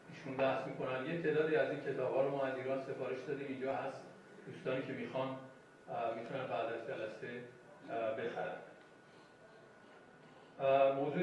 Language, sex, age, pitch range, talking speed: Persian, male, 40-59, 125-145 Hz, 120 wpm